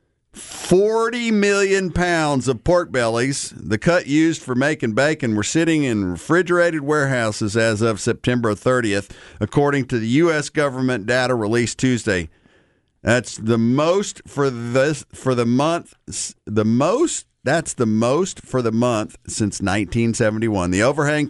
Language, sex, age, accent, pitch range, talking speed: English, male, 50-69, American, 115-150 Hz, 140 wpm